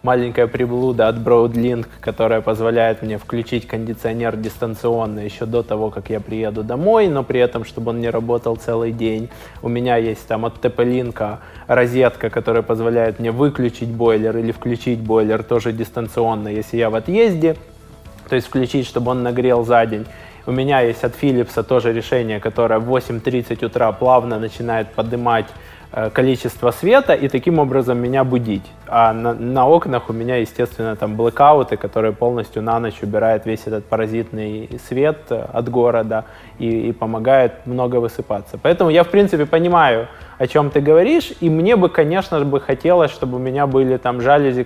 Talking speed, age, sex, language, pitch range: 165 wpm, 20-39, male, Russian, 115-130 Hz